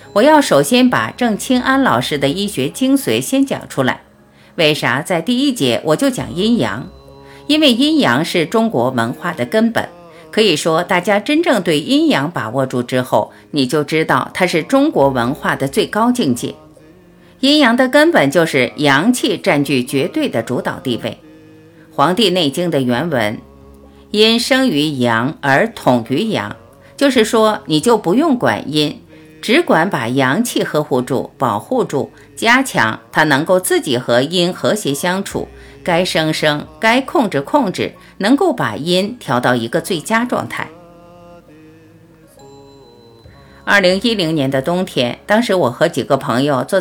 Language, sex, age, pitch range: Chinese, female, 50-69, 135-225 Hz